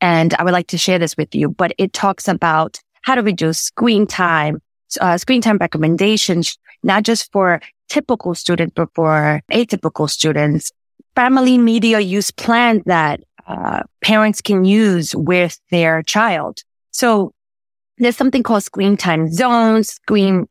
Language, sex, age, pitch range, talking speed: English, female, 20-39, 165-220 Hz, 150 wpm